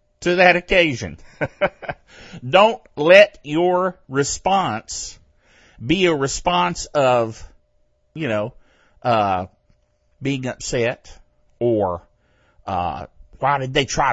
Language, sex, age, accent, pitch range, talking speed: English, male, 50-69, American, 130-200 Hz, 95 wpm